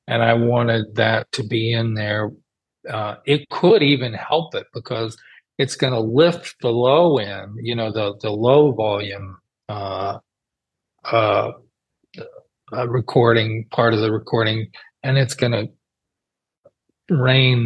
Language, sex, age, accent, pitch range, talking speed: English, male, 40-59, American, 110-135 Hz, 140 wpm